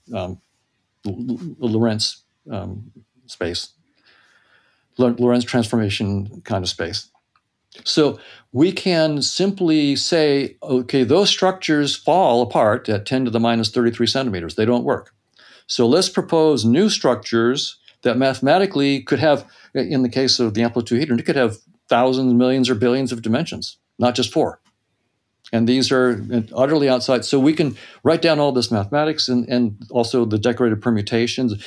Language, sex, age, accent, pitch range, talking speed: English, male, 50-69, American, 120-150 Hz, 150 wpm